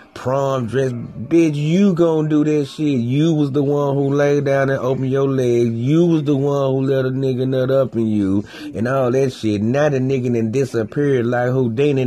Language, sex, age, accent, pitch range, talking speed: English, male, 30-49, American, 110-140 Hz, 210 wpm